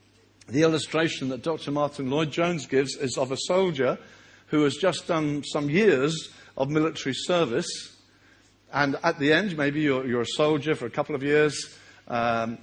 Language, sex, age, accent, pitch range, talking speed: English, male, 50-69, British, 135-180 Hz, 165 wpm